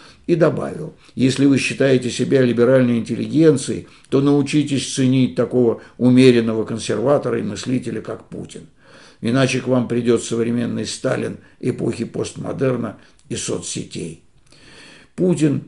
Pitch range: 120-150 Hz